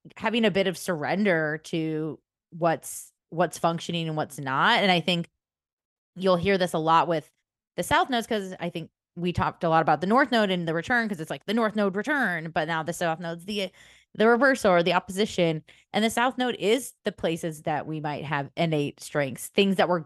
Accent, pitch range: American, 155-195 Hz